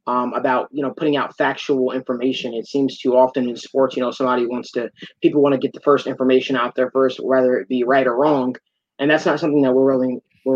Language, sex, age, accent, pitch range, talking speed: English, male, 20-39, American, 125-135 Hz, 240 wpm